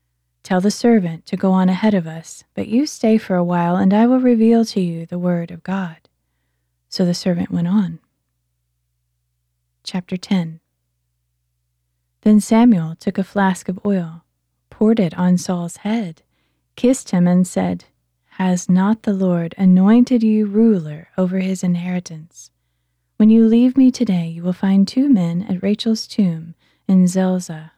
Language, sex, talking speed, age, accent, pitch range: English, female, 160 wpm, 20-39, American, 165-210 Hz